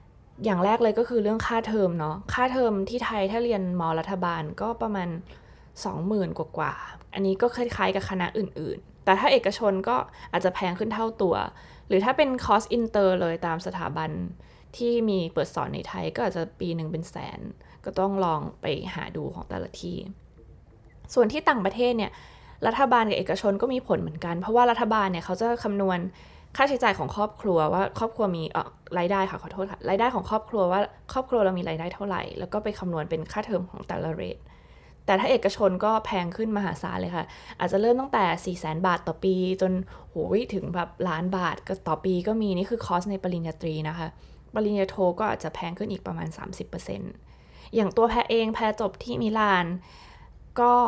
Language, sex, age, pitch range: Thai, female, 20-39, 175-220 Hz